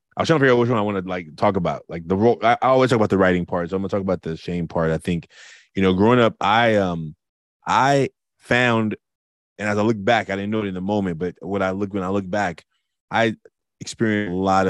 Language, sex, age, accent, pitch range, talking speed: English, male, 20-39, American, 85-105 Hz, 270 wpm